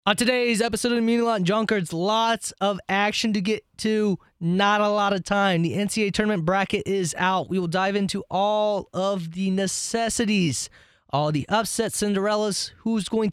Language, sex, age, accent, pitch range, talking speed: English, male, 20-39, American, 185-230 Hz, 175 wpm